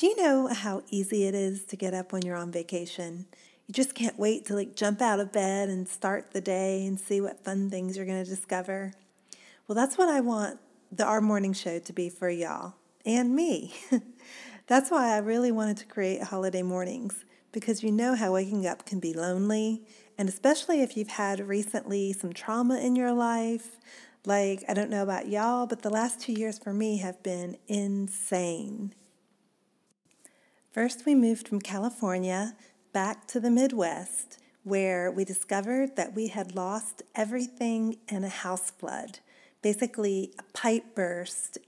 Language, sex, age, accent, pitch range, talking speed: English, female, 40-59, American, 195-235 Hz, 175 wpm